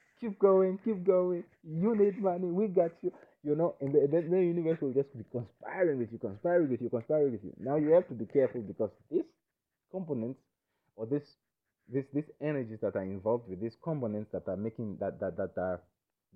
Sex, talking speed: male, 205 wpm